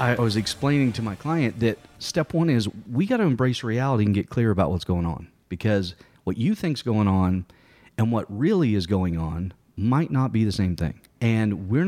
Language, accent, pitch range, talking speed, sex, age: English, American, 95-130 Hz, 215 wpm, male, 40-59